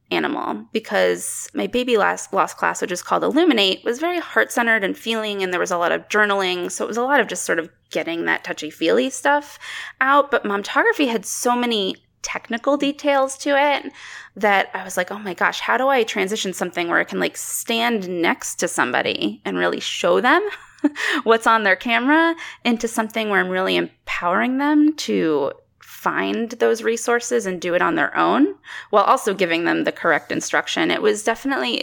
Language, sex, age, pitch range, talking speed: English, female, 20-39, 190-280 Hz, 190 wpm